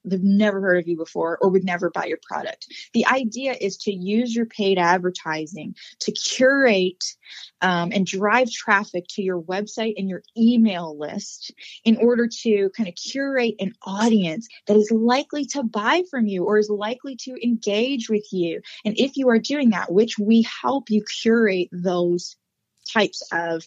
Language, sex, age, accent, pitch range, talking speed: English, female, 20-39, American, 180-225 Hz, 175 wpm